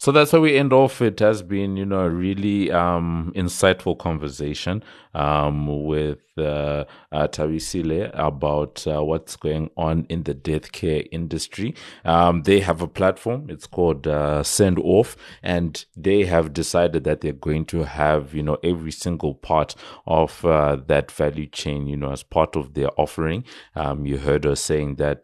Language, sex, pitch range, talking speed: English, male, 75-85 Hz, 175 wpm